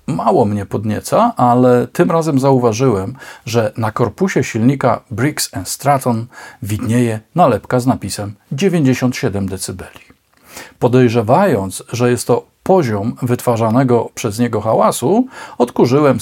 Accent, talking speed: native, 105 wpm